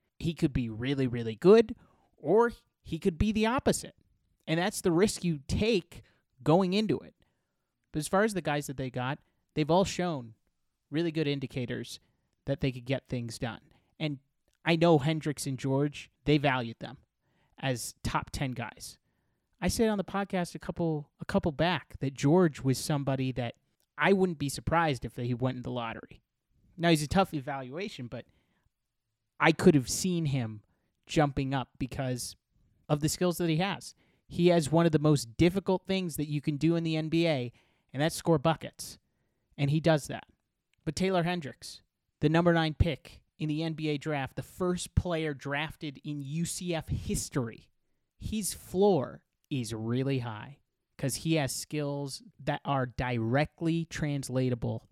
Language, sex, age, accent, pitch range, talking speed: English, male, 30-49, American, 125-165 Hz, 170 wpm